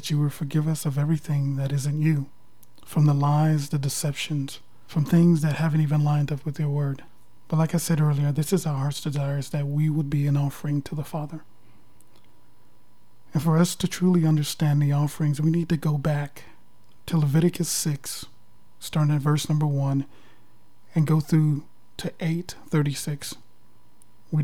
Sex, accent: male, American